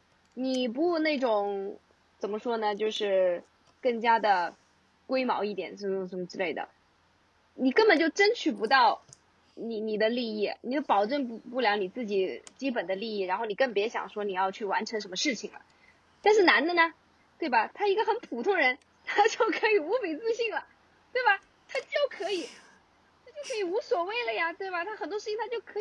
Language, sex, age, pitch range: Chinese, female, 20-39, 220-345 Hz